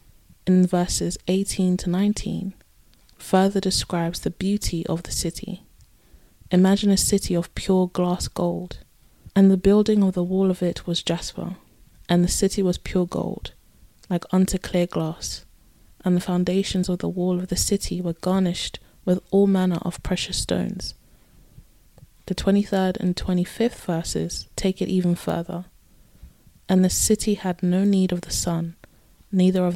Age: 20-39